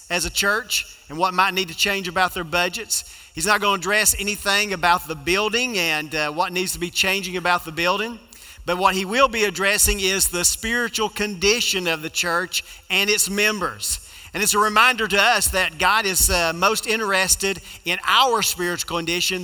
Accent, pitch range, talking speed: American, 170-200 Hz, 195 wpm